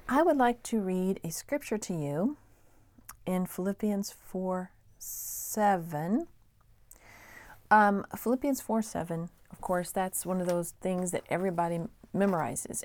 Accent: American